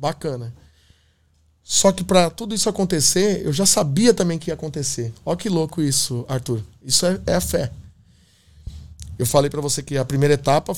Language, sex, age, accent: Portuguese, male, 20-39, Brazilian